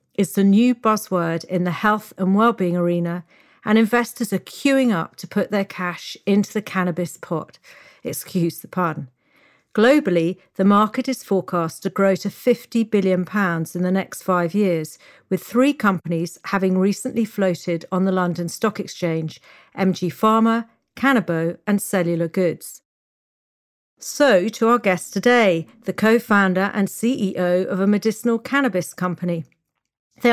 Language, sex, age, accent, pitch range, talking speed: English, female, 50-69, British, 180-225 Hz, 145 wpm